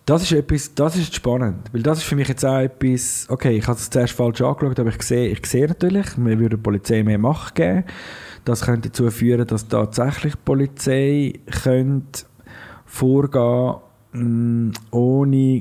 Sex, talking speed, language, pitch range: male, 175 wpm, German, 110-135 Hz